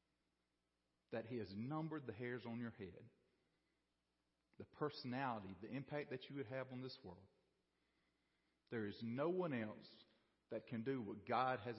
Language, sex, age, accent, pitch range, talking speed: English, male, 40-59, American, 100-125 Hz, 160 wpm